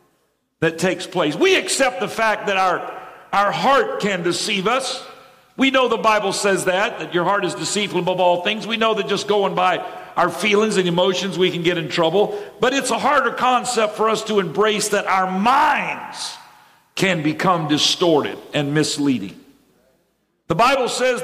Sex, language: male, English